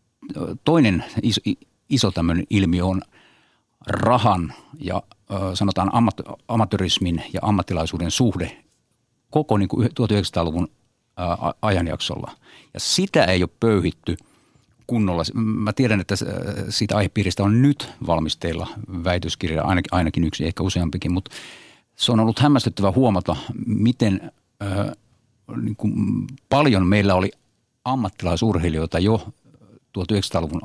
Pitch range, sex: 90-115 Hz, male